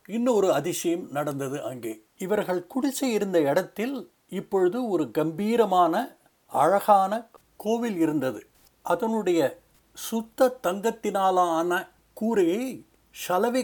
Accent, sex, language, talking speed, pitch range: native, male, Tamil, 85 wpm, 160-215 Hz